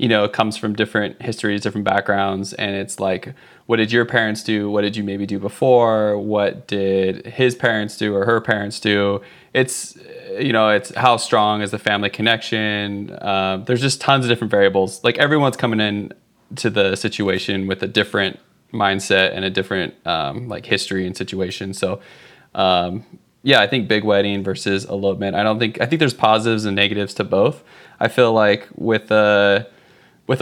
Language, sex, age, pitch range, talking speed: English, male, 20-39, 100-115 Hz, 185 wpm